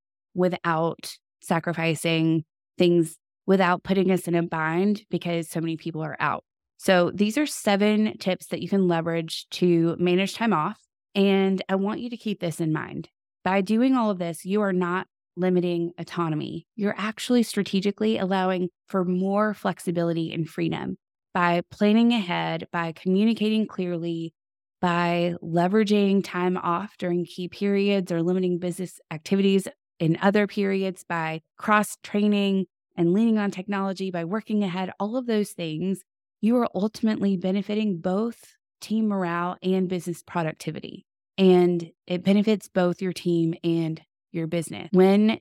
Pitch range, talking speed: 170-200 Hz, 145 wpm